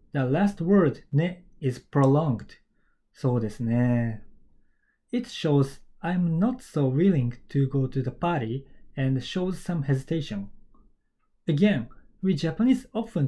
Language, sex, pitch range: Japanese, male, 130-175 Hz